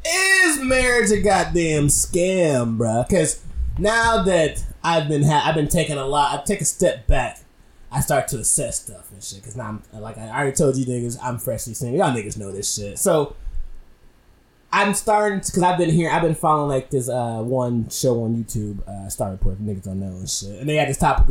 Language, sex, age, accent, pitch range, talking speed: English, male, 20-39, American, 115-160 Hz, 215 wpm